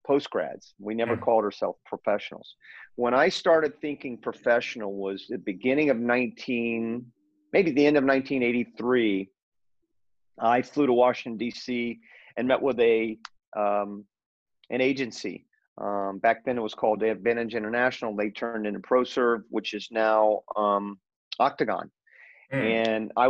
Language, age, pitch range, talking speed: English, 40-59, 105-125 Hz, 135 wpm